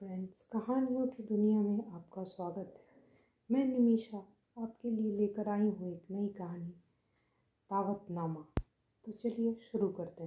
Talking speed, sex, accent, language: 135 wpm, female, native, Hindi